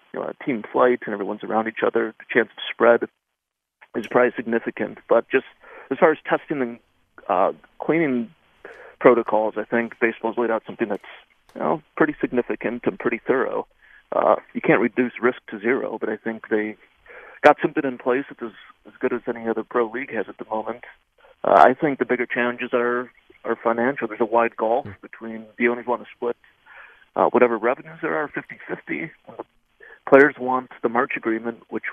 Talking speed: 185 wpm